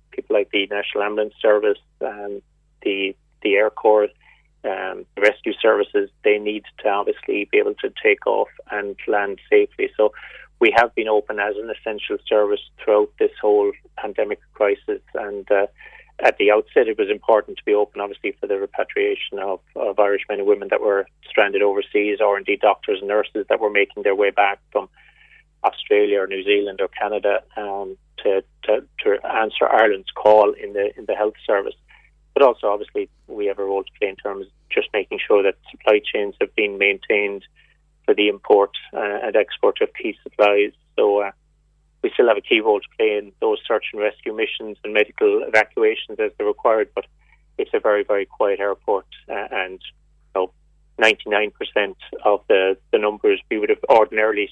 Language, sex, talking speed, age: English, male, 190 wpm, 30-49